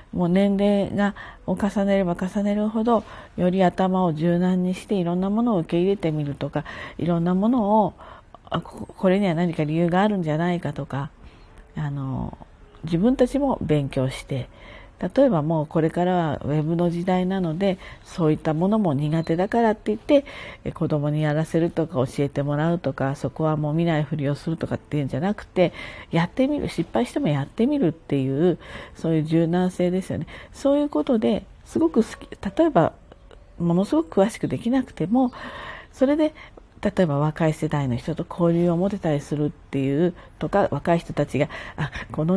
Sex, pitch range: female, 150-200 Hz